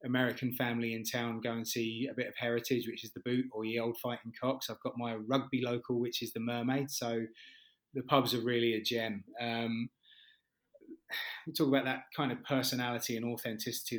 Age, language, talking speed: 20-39, English, 195 wpm